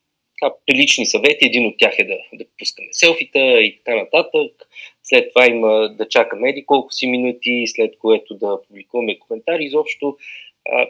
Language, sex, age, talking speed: Bulgarian, male, 20-39, 155 wpm